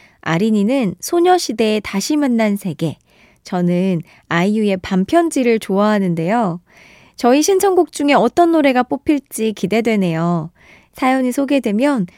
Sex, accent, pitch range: female, native, 190-280 Hz